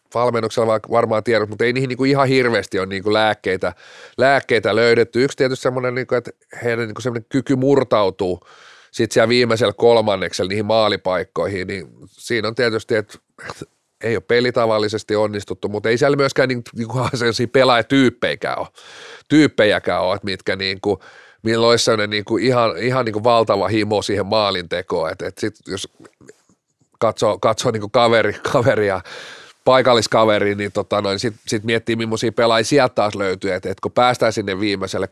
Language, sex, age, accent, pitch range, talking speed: Finnish, male, 30-49, native, 110-125 Hz, 135 wpm